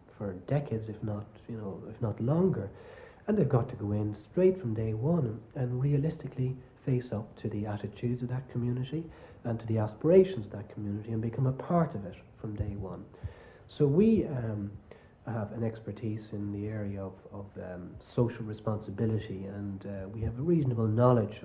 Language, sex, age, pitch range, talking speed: English, male, 60-79, 100-120 Hz, 185 wpm